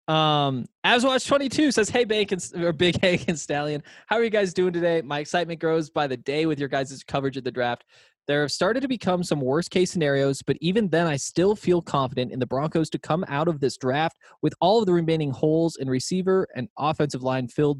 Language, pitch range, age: English, 135-180 Hz, 20-39